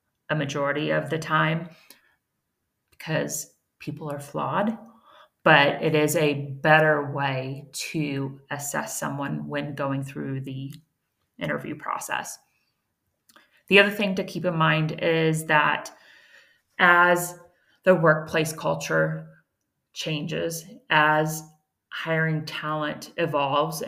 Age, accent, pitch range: 30-49, American, 145-160 Hz